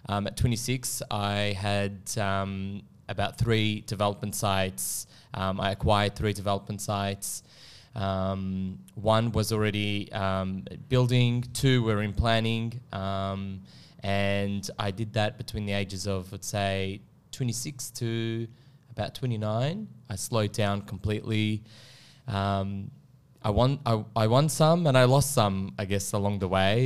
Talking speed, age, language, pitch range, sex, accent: 135 wpm, 20-39, English, 100-120 Hz, male, Australian